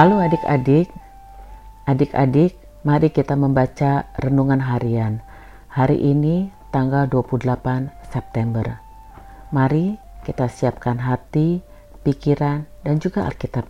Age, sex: 50-69, female